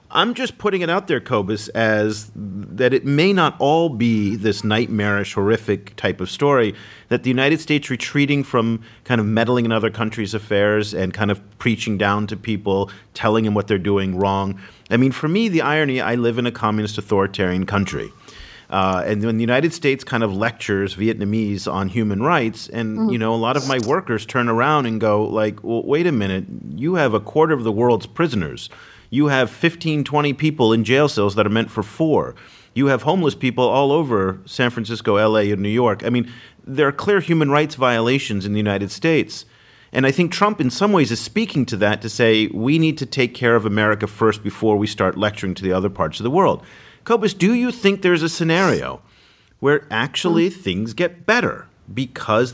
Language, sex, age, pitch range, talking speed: English, male, 40-59, 105-140 Hz, 205 wpm